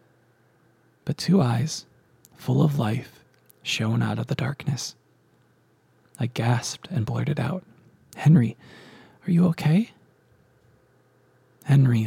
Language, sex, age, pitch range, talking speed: English, male, 20-39, 115-140 Hz, 105 wpm